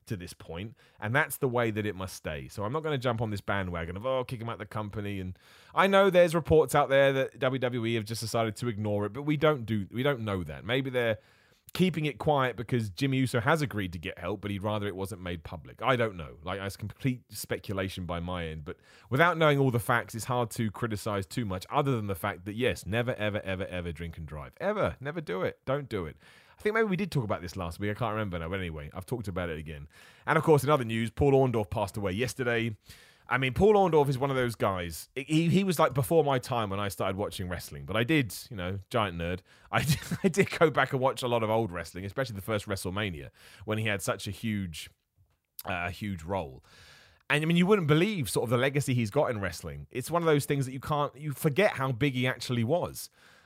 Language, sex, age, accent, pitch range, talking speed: English, male, 30-49, British, 95-135 Hz, 255 wpm